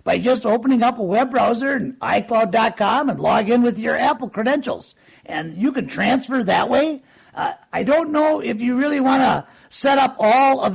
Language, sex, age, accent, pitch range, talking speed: English, male, 50-69, American, 235-280 Hz, 195 wpm